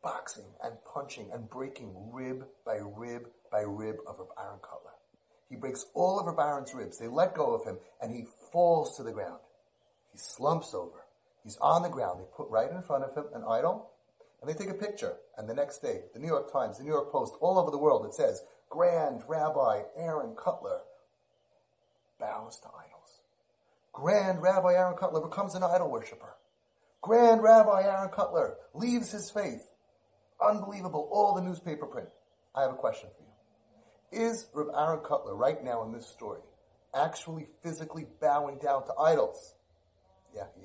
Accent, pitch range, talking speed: American, 145-225 Hz, 175 wpm